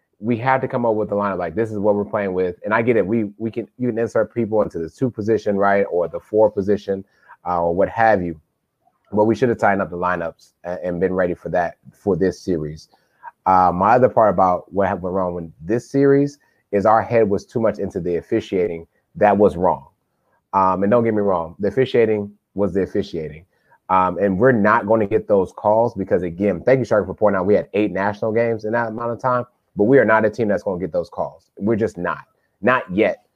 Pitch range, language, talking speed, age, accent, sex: 95-120 Hz, English, 240 wpm, 30-49, American, male